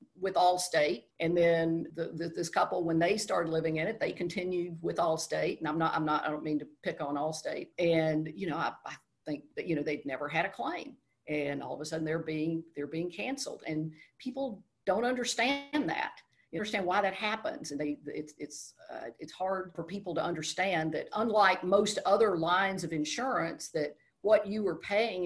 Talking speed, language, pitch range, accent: 195 wpm, English, 150-190 Hz, American